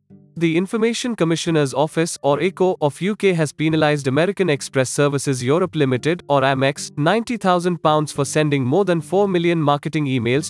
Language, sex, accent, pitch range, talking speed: English, male, Indian, 135-175 Hz, 150 wpm